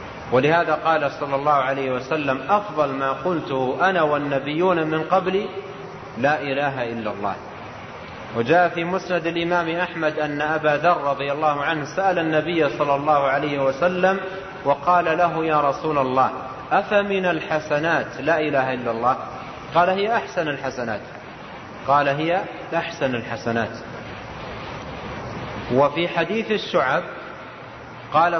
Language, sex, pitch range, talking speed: Arabic, male, 135-175 Hz, 120 wpm